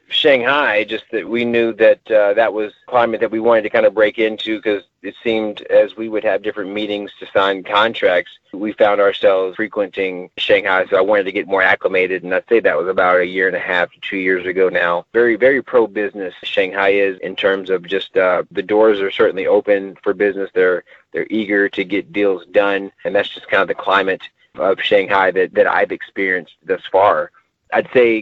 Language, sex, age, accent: Chinese, male, 30-49, American